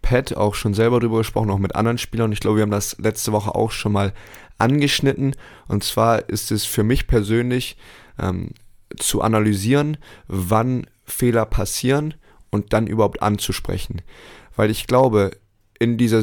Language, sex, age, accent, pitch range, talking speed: German, male, 20-39, German, 100-115 Hz, 160 wpm